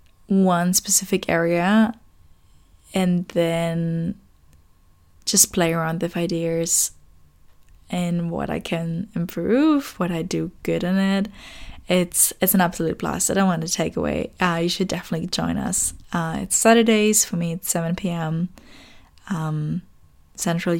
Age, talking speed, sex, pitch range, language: 10-29, 140 wpm, female, 165-205 Hz, English